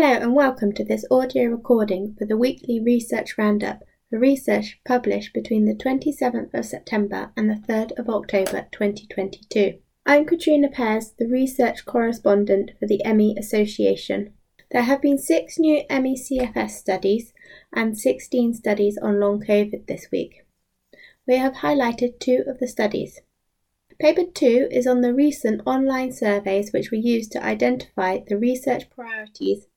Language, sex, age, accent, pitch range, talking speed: English, female, 20-39, British, 210-260 Hz, 150 wpm